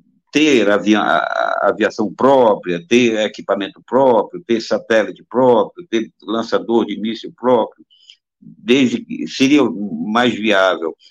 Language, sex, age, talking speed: Portuguese, male, 60-79, 90 wpm